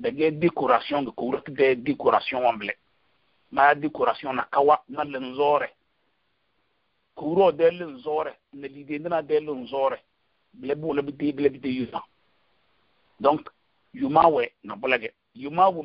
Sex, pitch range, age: male, 140-175 Hz, 50-69